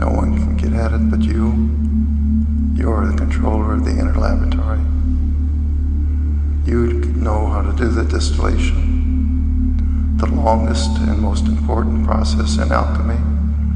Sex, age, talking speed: male, 60-79, 135 wpm